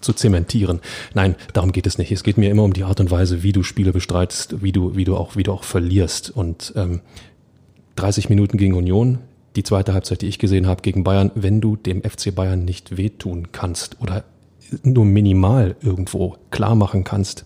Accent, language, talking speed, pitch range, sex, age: German, German, 205 wpm, 95-115 Hz, male, 40-59